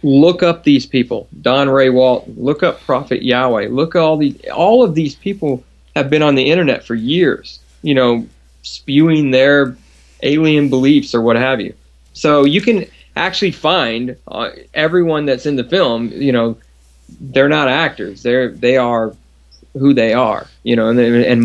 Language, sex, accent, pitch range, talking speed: English, male, American, 115-145 Hz, 175 wpm